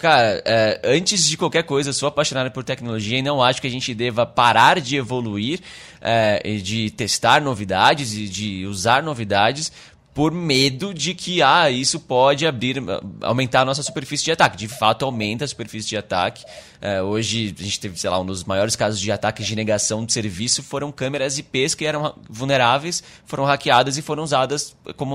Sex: male